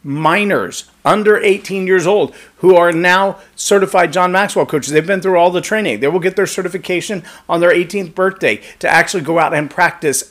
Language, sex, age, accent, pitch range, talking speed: English, male, 40-59, American, 150-195 Hz, 190 wpm